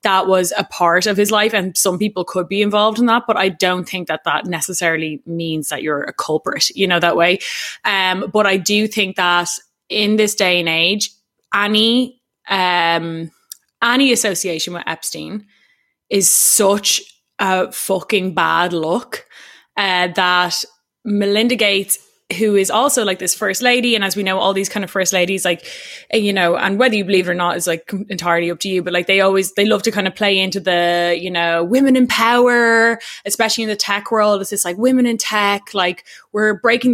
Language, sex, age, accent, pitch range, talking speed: English, female, 20-39, Irish, 180-215 Hz, 200 wpm